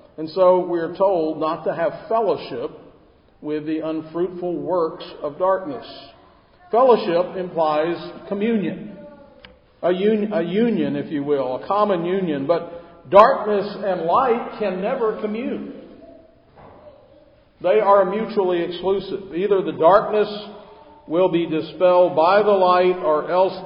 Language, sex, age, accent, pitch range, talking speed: English, male, 50-69, American, 160-205 Hz, 120 wpm